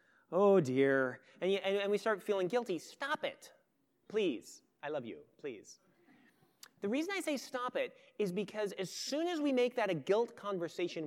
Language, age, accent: English, 30-49, American